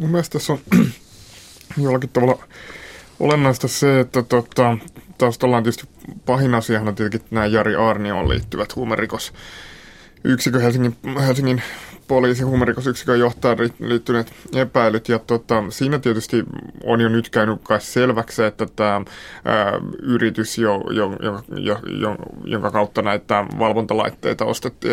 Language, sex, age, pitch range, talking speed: Finnish, male, 20-39, 110-120 Hz, 120 wpm